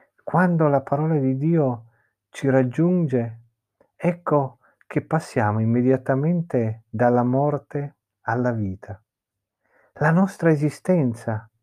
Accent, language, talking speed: native, Italian, 95 wpm